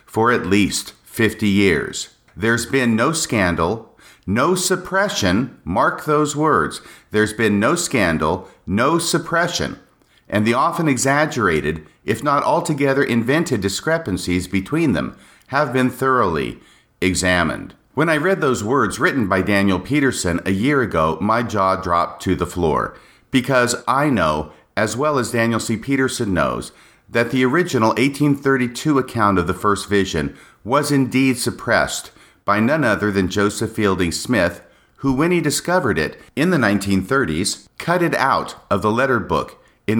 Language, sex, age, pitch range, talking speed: English, male, 50-69, 95-140 Hz, 145 wpm